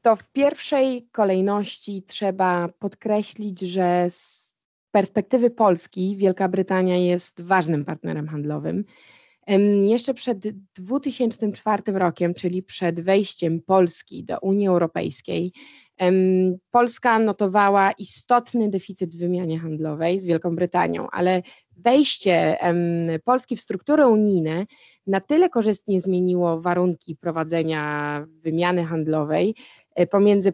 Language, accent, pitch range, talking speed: Polish, native, 180-225 Hz, 100 wpm